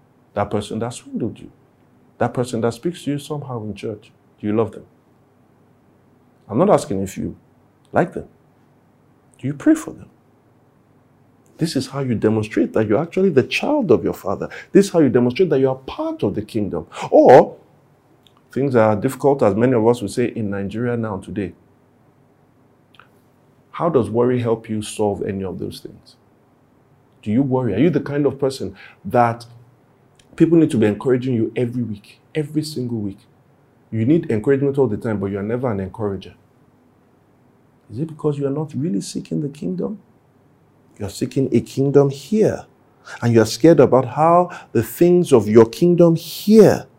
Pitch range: 110-145 Hz